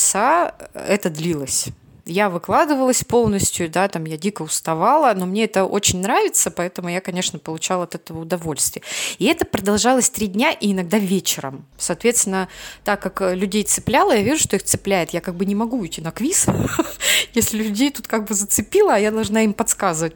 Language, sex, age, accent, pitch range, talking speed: Russian, female, 20-39, native, 175-230 Hz, 180 wpm